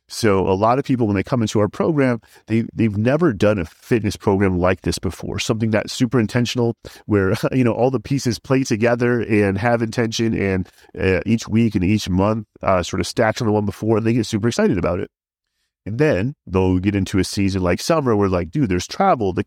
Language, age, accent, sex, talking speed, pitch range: English, 30-49, American, male, 225 wpm, 95-120 Hz